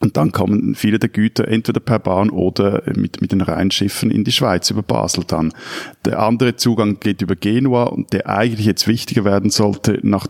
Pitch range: 100-120 Hz